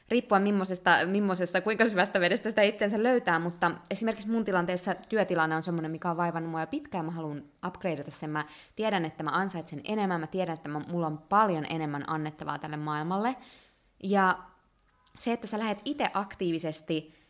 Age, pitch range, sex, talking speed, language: 20-39, 160-205 Hz, female, 170 wpm, Finnish